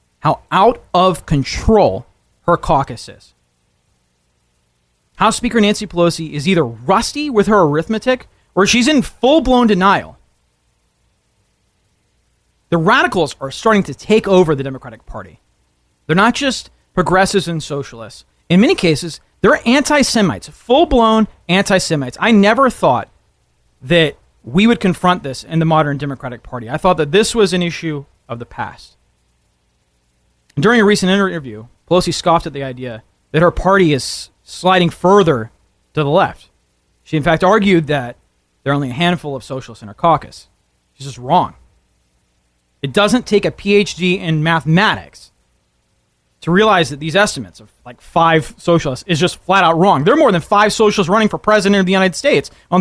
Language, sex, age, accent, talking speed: English, male, 30-49, American, 160 wpm